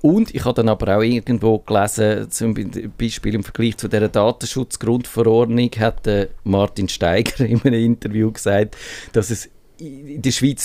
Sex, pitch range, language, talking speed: male, 100-120 Hz, German, 150 wpm